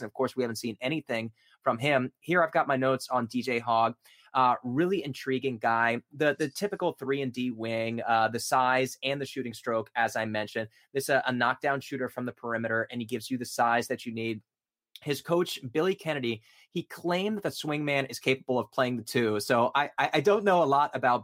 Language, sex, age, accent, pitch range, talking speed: English, male, 20-39, American, 115-140 Hz, 220 wpm